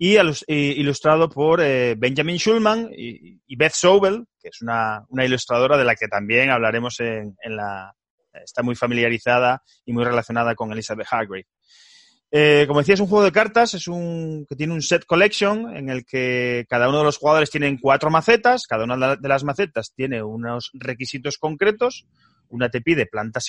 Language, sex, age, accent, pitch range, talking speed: Spanish, male, 30-49, Spanish, 120-175 Hz, 175 wpm